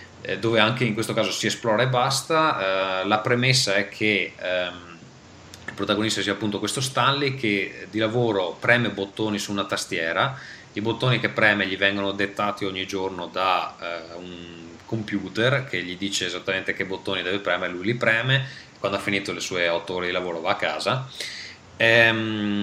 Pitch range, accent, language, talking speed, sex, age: 95-115 Hz, native, Italian, 165 wpm, male, 30-49